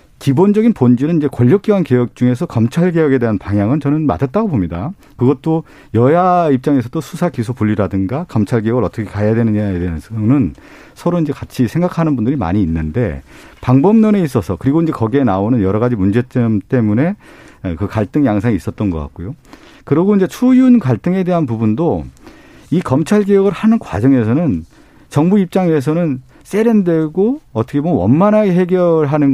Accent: native